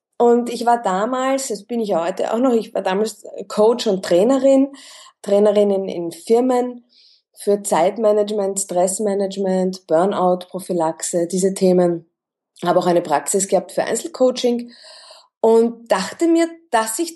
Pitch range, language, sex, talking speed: 195-270 Hz, German, female, 135 wpm